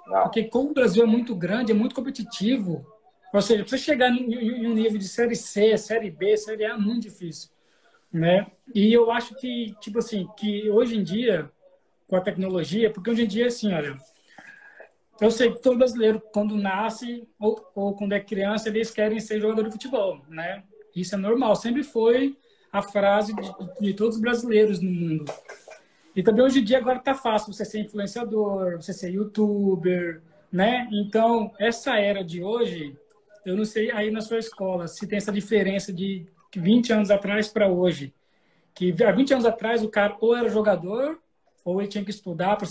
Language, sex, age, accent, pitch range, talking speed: Portuguese, male, 20-39, Brazilian, 195-235 Hz, 190 wpm